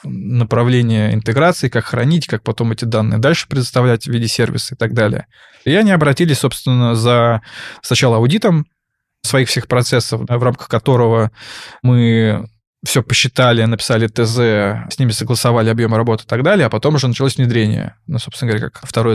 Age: 20-39